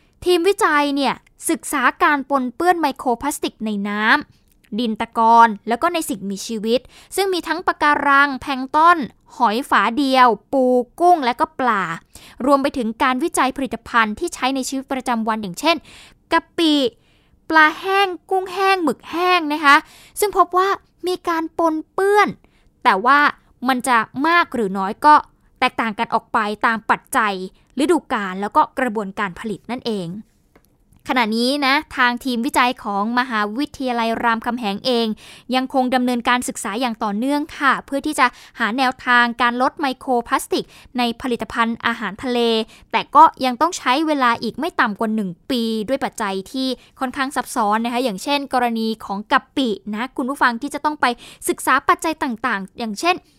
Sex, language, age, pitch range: female, Thai, 10-29, 230-300 Hz